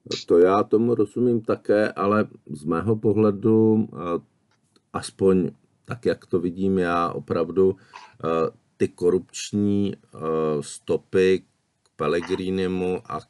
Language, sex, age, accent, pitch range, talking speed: Czech, male, 50-69, native, 75-95 Hz, 100 wpm